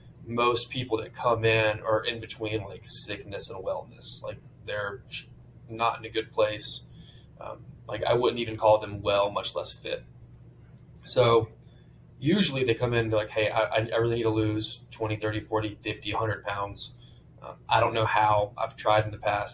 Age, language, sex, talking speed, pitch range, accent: 20-39, English, male, 185 wpm, 105-115 Hz, American